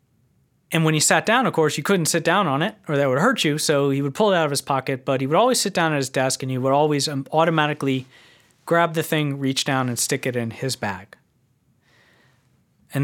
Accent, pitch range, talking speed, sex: American, 135-165 Hz, 245 wpm, male